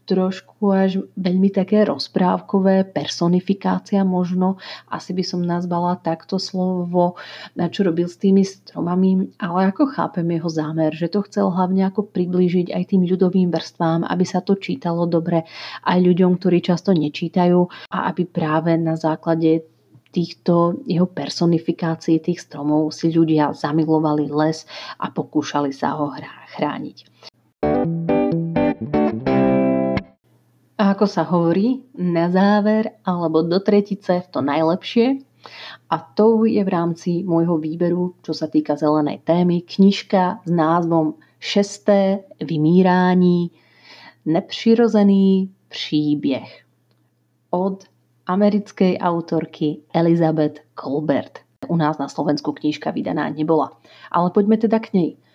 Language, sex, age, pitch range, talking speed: Slovak, female, 30-49, 160-190 Hz, 120 wpm